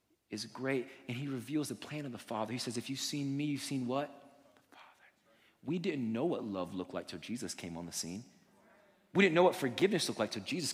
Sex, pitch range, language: male, 115-170 Hz, English